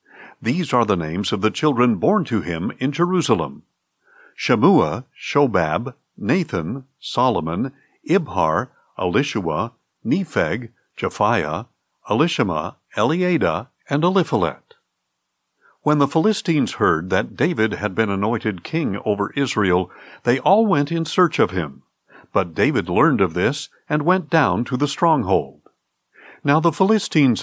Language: English